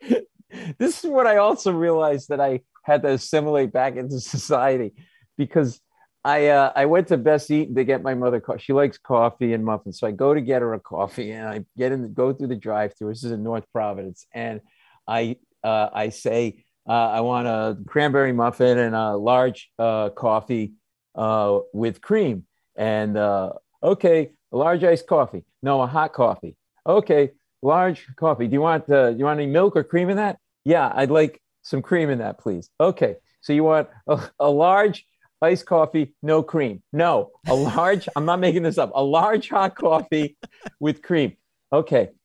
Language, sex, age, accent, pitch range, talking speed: English, male, 50-69, American, 120-170 Hz, 190 wpm